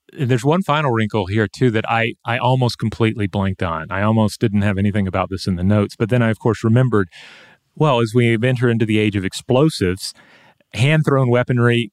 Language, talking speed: English, 205 wpm